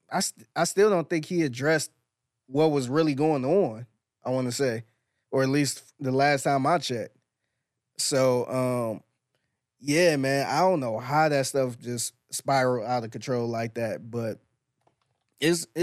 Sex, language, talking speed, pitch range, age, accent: male, English, 165 wpm, 120-145 Hz, 20-39, American